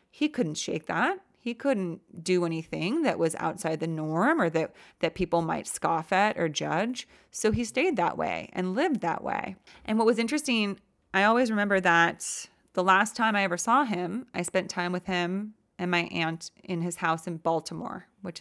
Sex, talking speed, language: female, 195 wpm, English